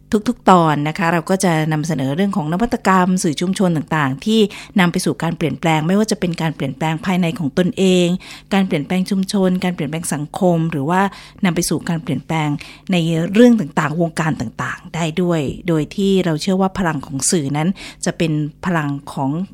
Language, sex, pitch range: Thai, female, 155-195 Hz